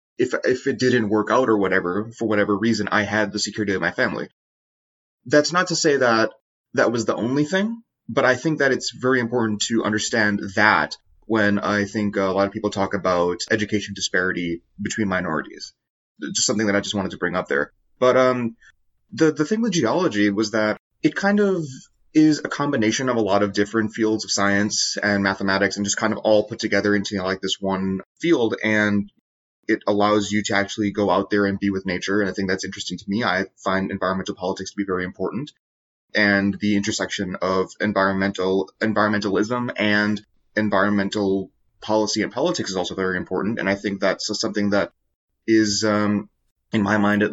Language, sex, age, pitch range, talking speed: English, male, 30-49, 95-110 Hz, 200 wpm